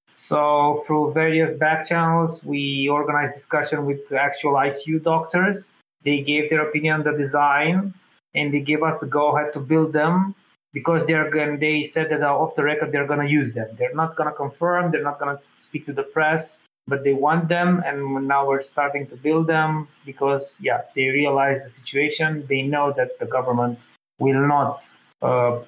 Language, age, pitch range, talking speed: English, 20-39, 140-160 Hz, 190 wpm